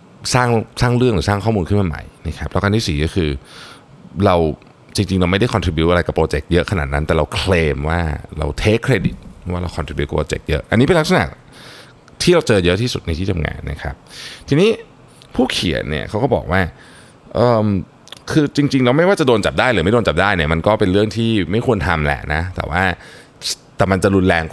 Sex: male